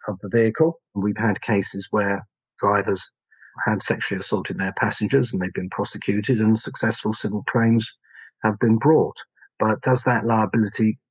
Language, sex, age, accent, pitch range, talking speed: English, male, 40-59, British, 100-115 Hz, 150 wpm